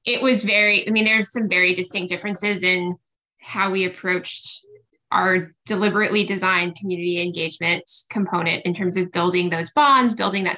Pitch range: 180-220 Hz